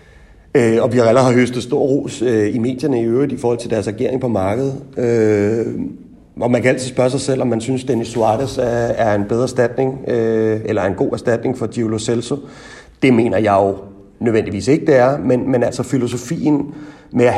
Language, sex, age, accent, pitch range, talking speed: Danish, male, 30-49, native, 115-130 Hz, 190 wpm